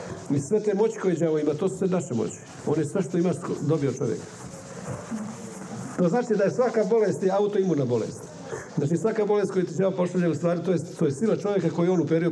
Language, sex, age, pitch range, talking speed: Croatian, male, 50-69, 145-185 Hz, 220 wpm